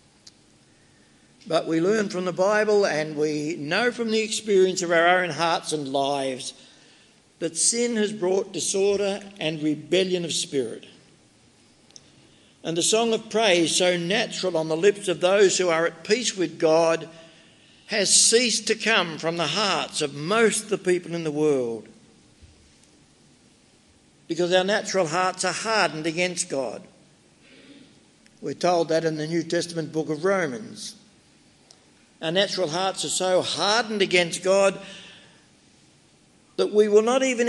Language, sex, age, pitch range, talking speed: English, male, 60-79, 165-210 Hz, 145 wpm